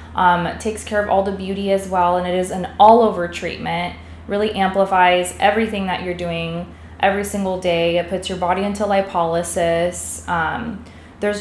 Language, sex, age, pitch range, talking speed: English, female, 20-39, 175-210 Hz, 175 wpm